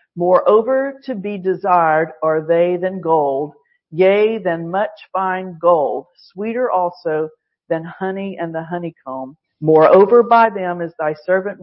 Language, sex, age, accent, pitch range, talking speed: English, female, 50-69, American, 175-245 Hz, 135 wpm